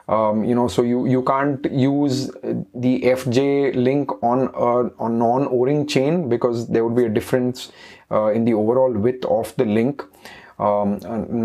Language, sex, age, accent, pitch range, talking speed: English, male, 30-49, Indian, 120-145 Hz, 170 wpm